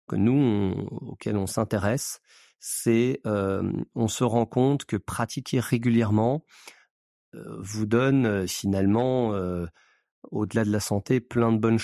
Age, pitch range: 40-59, 100-125 Hz